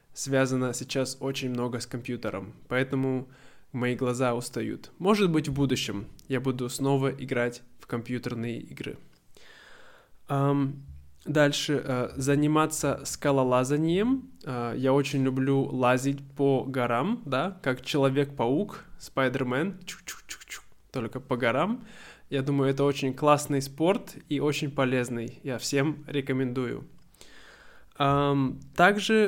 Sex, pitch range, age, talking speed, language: male, 125-150 Hz, 20-39, 105 wpm, Russian